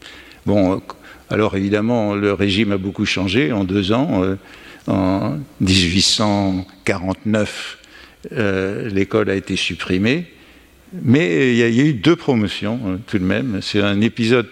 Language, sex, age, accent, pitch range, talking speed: French, male, 60-79, French, 100-120 Hz, 145 wpm